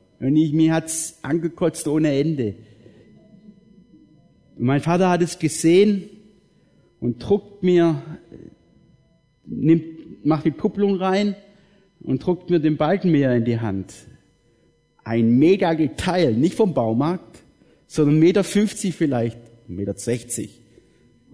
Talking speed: 115 wpm